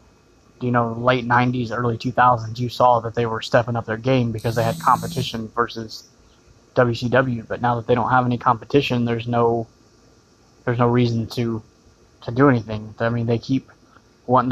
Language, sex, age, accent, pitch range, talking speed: English, male, 20-39, American, 115-125 Hz, 180 wpm